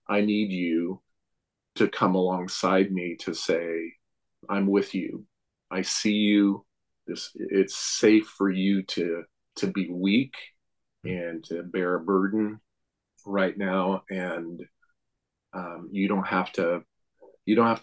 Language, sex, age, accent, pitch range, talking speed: English, male, 40-59, American, 90-105 Hz, 135 wpm